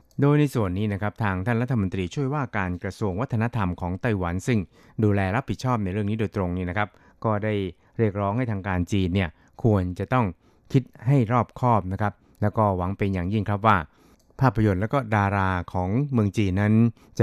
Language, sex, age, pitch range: Thai, male, 60-79, 95-115 Hz